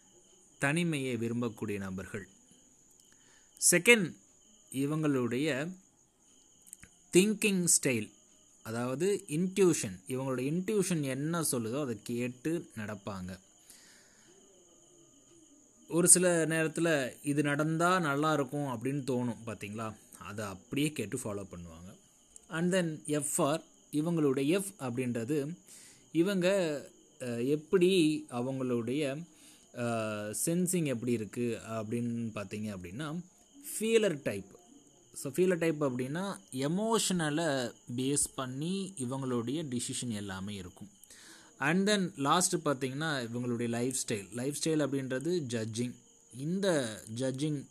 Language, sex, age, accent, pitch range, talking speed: Tamil, male, 20-39, native, 120-165 Hz, 85 wpm